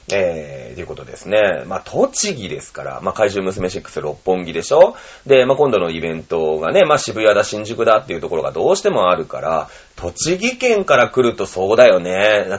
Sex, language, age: male, Japanese, 30-49